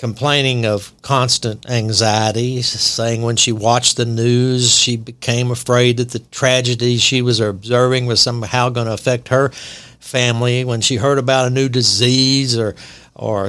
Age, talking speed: 60-79, 155 wpm